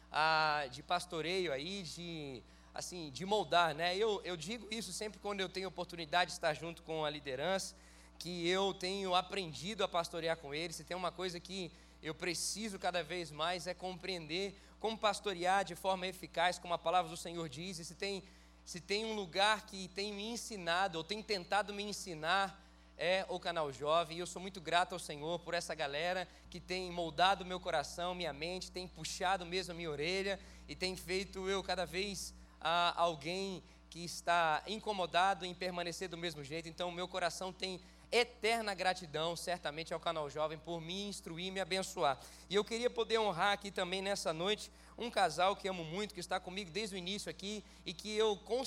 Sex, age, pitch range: male, 20-39, 170-200 Hz